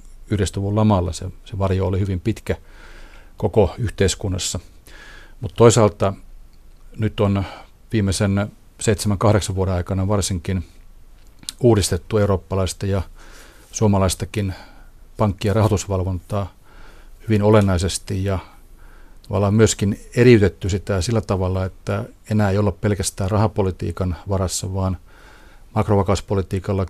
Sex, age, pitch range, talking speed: male, 40-59, 90-105 Hz, 100 wpm